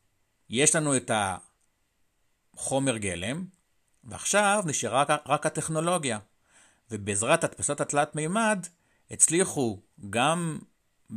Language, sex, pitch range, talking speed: Hebrew, male, 105-145 Hz, 85 wpm